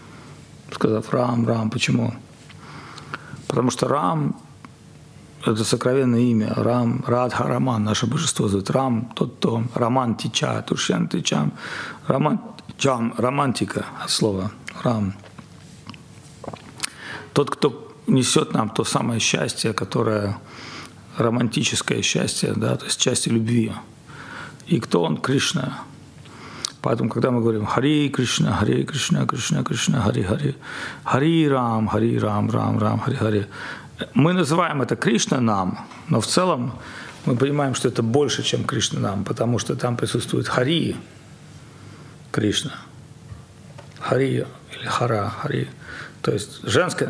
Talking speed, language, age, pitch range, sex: 120 wpm, Russian, 50-69, 110-135 Hz, male